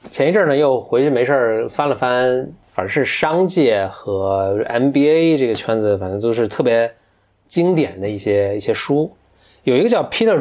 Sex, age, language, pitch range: male, 20-39, Chinese, 100-130 Hz